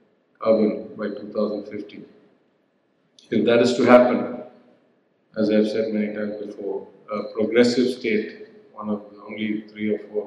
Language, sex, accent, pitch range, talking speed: English, male, Indian, 105-115 Hz, 140 wpm